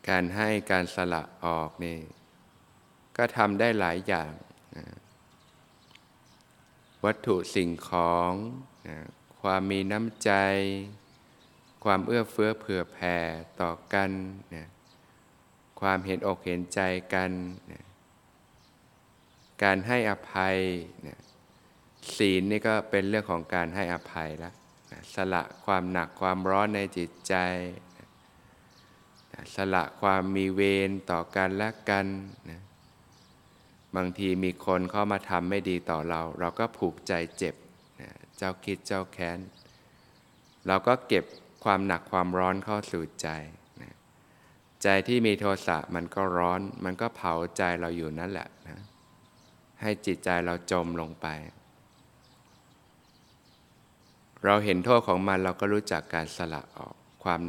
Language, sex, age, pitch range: Thai, male, 20-39, 85-100 Hz